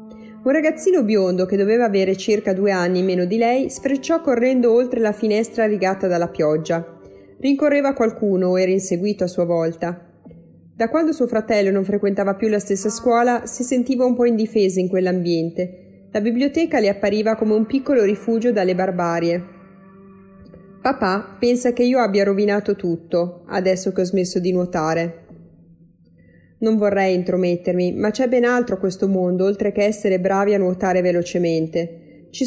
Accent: native